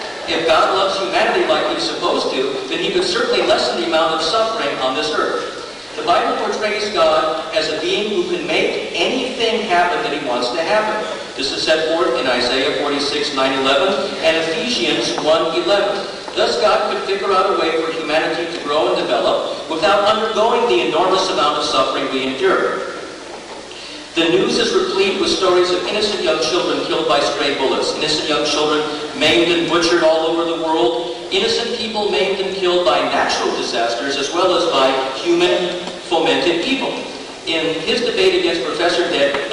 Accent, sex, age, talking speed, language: American, male, 50-69, 175 wpm, English